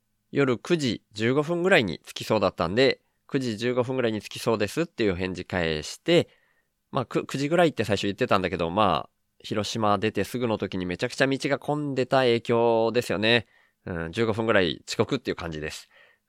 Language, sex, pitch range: Japanese, male, 100-145 Hz